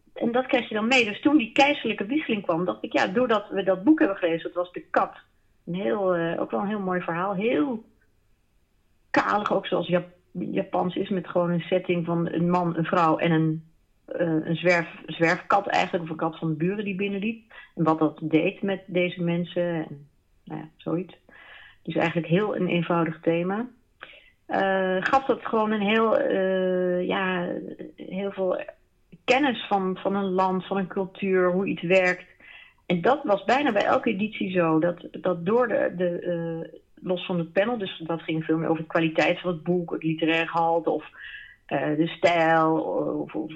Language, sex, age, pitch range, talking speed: Dutch, female, 40-59, 170-205 Hz, 195 wpm